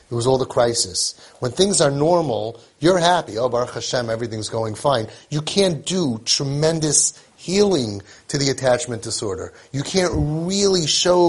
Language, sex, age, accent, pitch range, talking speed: English, male, 30-49, American, 135-185 Hz, 160 wpm